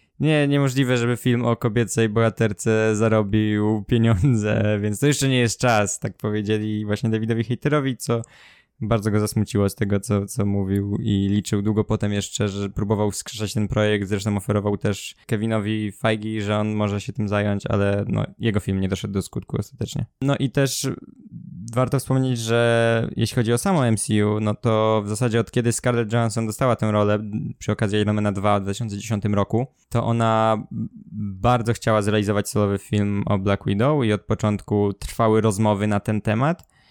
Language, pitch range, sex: Polish, 105-120 Hz, male